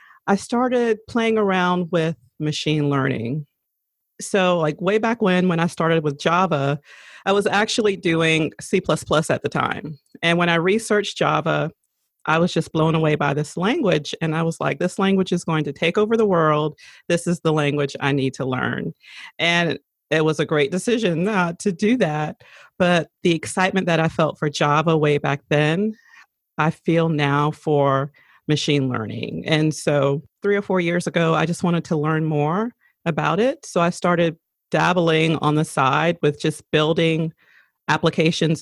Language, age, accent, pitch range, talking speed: English, 40-59, American, 150-175 Hz, 170 wpm